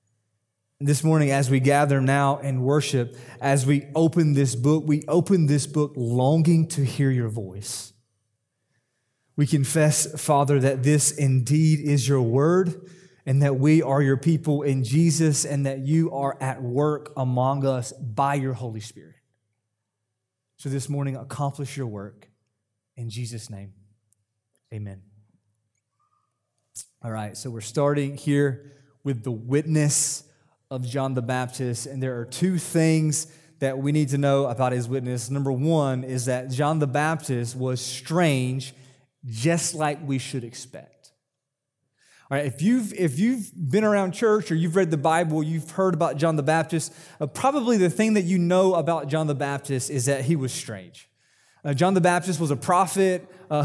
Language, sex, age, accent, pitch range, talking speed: English, male, 30-49, American, 125-160 Hz, 160 wpm